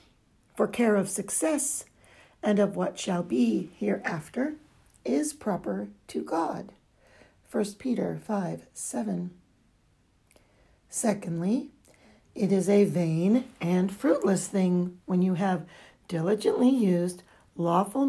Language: English